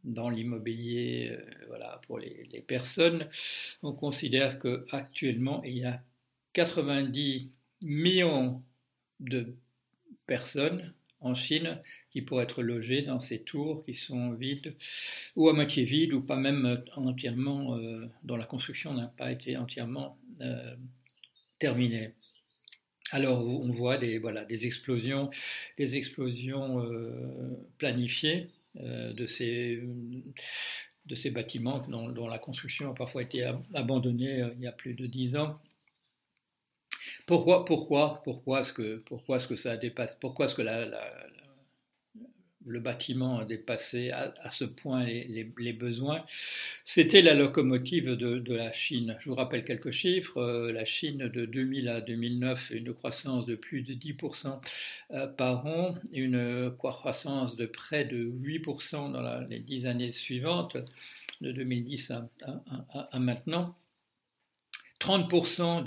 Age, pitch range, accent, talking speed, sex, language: 60-79, 120-140 Hz, French, 135 wpm, male, French